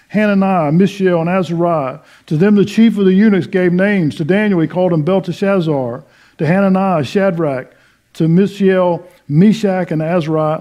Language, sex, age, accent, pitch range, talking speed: English, male, 50-69, American, 140-185 Hz, 155 wpm